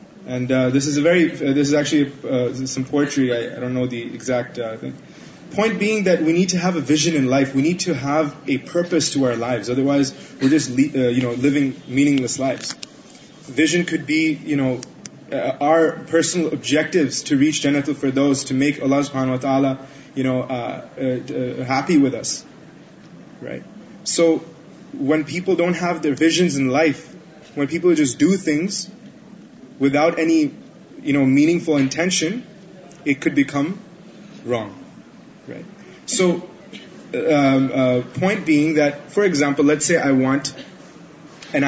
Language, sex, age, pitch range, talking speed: Urdu, male, 20-39, 135-175 Hz, 170 wpm